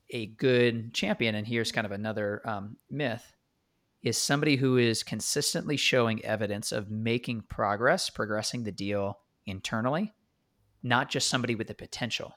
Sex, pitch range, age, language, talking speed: male, 105-130 Hz, 30-49, English, 145 wpm